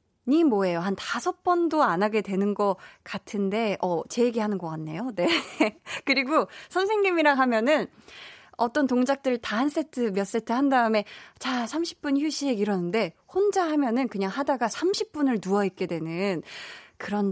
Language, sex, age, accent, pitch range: Korean, female, 20-39, native, 200-300 Hz